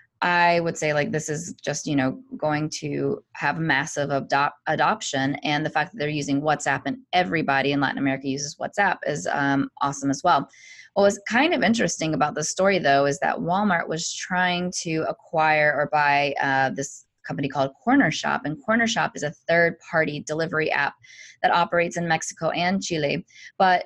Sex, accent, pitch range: female, American, 140-170 Hz